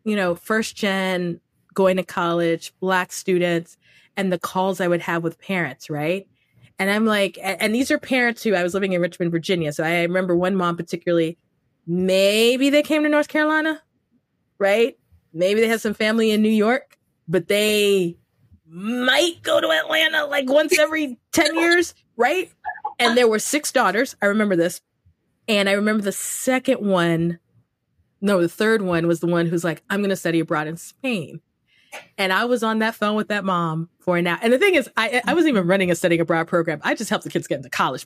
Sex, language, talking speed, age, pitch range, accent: female, English, 200 wpm, 20-39, 170-225 Hz, American